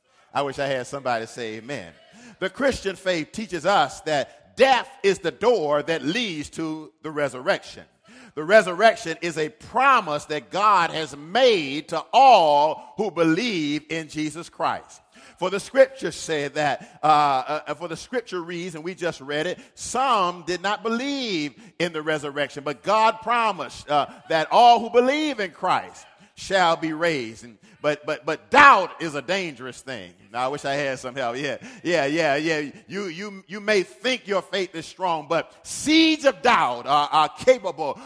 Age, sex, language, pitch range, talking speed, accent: 50-69, male, English, 150-225 Hz, 170 wpm, American